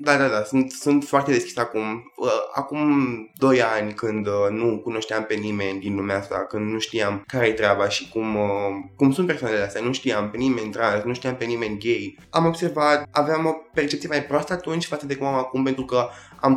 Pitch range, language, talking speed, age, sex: 110-135 Hz, Romanian, 215 wpm, 20-39, male